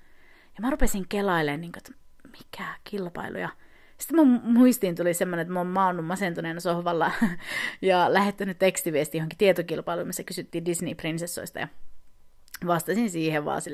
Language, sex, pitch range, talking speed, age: Finnish, female, 175-290 Hz, 130 wpm, 30-49